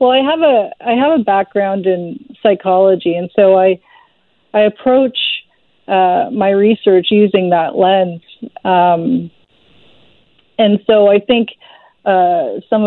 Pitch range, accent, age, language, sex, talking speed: 170-205 Hz, American, 40-59, English, female, 130 wpm